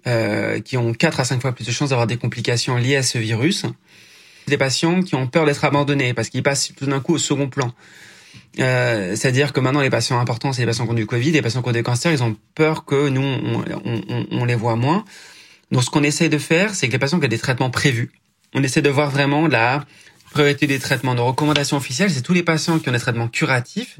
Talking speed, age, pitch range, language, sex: 250 wpm, 20-39, 125-145 Hz, French, male